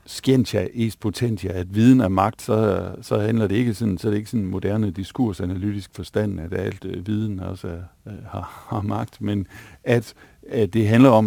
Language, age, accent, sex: Danish, 60-79, native, male